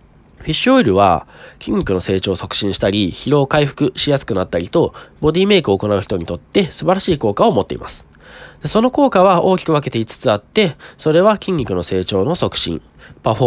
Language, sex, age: Japanese, male, 20-39